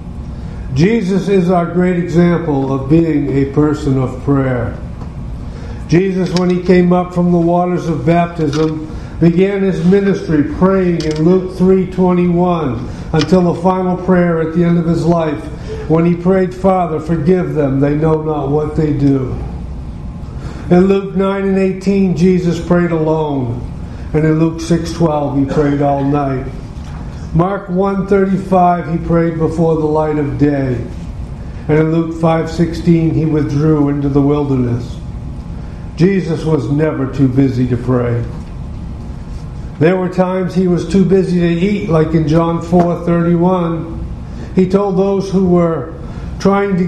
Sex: male